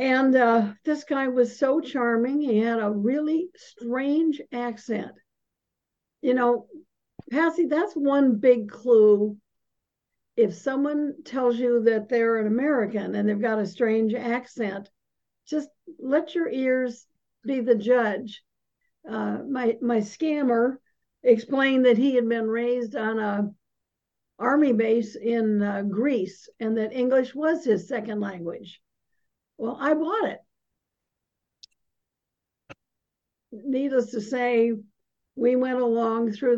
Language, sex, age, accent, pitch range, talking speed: English, female, 60-79, American, 220-265 Hz, 125 wpm